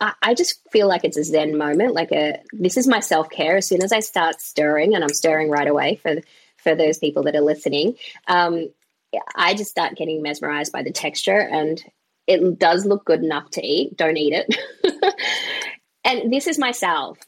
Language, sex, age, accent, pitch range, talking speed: English, female, 20-39, Australian, 150-170 Hz, 200 wpm